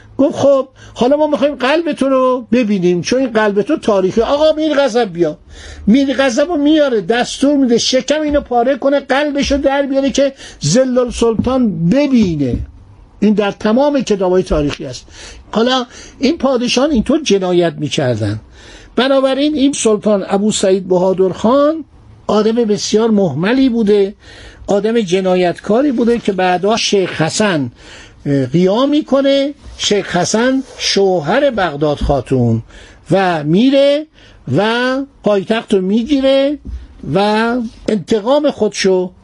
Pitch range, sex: 185-265 Hz, male